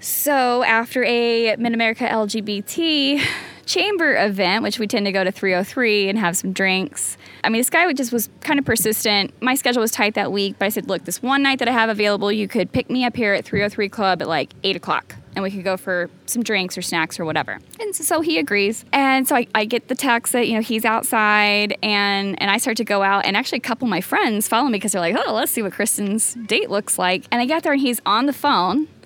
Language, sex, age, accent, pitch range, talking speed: English, female, 10-29, American, 195-245 Hz, 250 wpm